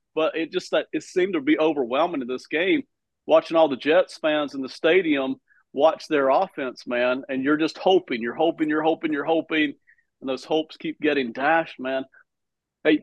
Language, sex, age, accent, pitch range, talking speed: English, male, 40-59, American, 150-195 Hz, 190 wpm